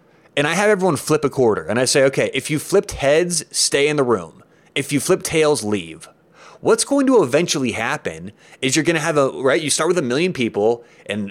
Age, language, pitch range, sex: 30-49, English, 135-185 Hz, male